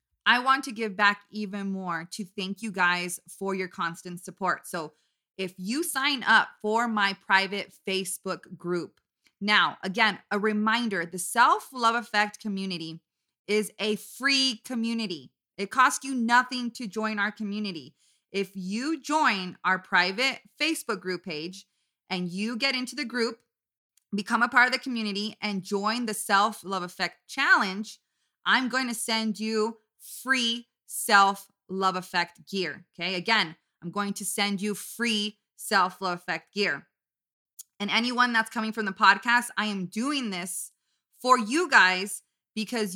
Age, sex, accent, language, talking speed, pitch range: 20-39, female, American, English, 155 wpm, 185-230 Hz